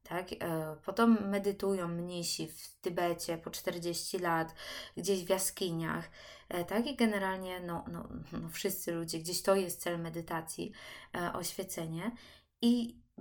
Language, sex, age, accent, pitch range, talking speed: Polish, female, 20-39, native, 180-225 Hz, 100 wpm